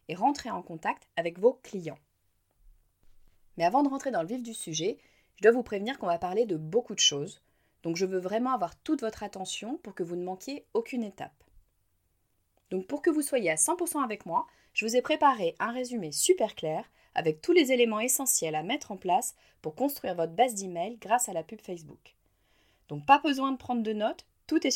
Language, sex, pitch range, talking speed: French, female, 165-255 Hz, 210 wpm